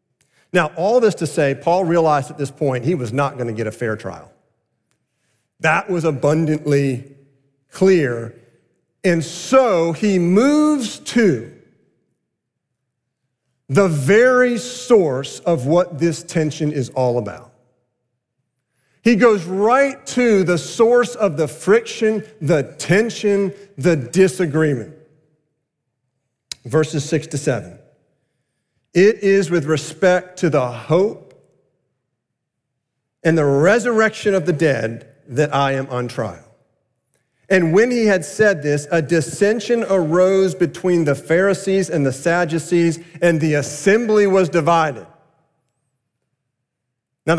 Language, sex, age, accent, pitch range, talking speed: English, male, 40-59, American, 135-190 Hz, 120 wpm